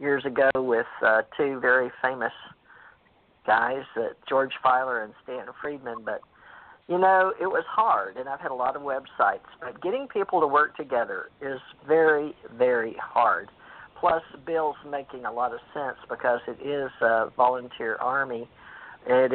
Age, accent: 50-69, American